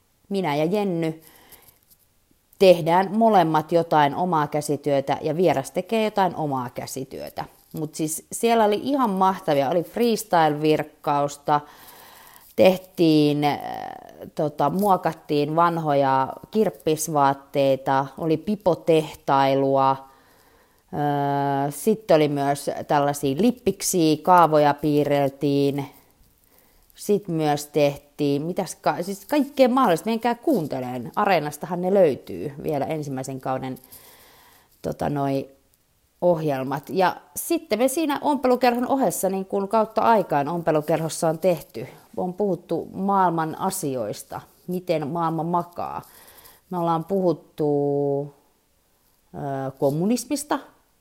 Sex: female